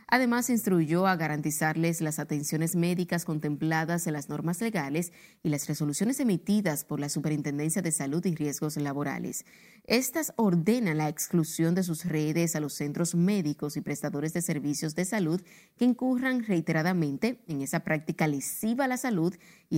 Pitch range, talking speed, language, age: 150-205 Hz, 160 wpm, Spanish, 30-49